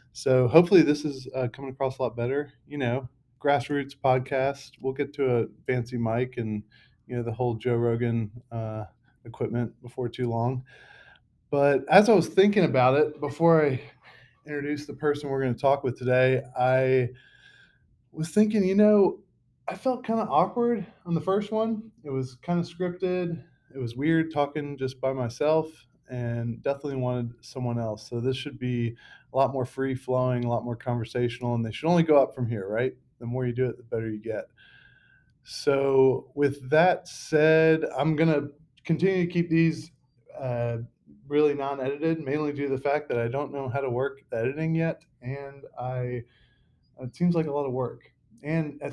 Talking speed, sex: 180 wpm, male